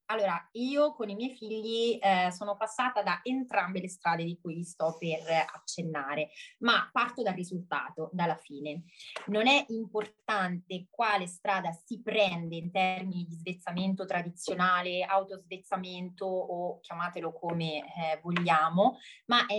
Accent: native